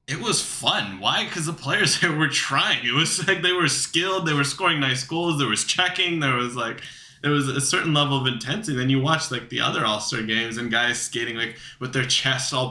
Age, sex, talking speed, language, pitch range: 20-39, male, 235 wpm, English, 110-140 Hz